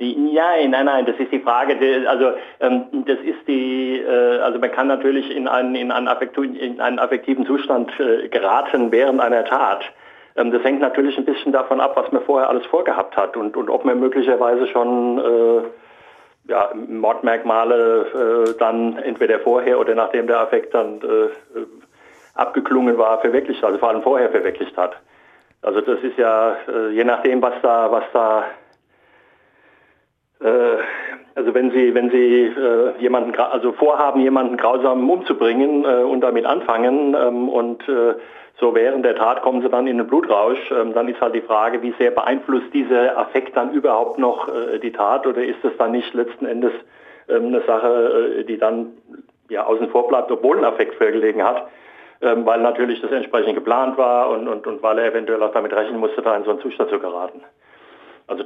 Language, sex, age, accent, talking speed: German, male, 60-79, German, 165 wpm